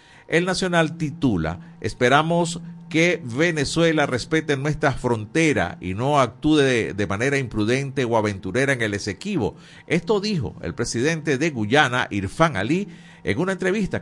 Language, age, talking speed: Spanish, 50-69, 135 wpm